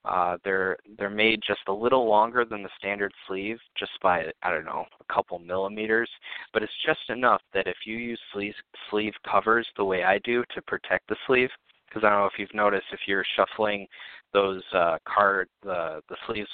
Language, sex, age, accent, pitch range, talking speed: English, male, 20-39, American, 100-115 Hz, 200 wpm